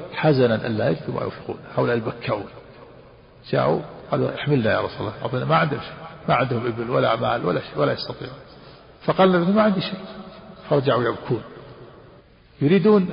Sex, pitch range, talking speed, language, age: male, 125-155 Hz, 150 wpm, Arabic, 50-69